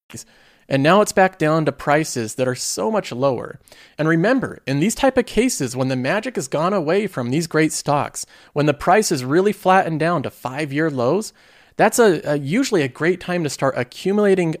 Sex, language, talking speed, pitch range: male, English, 195 wpm, 130-180 Hz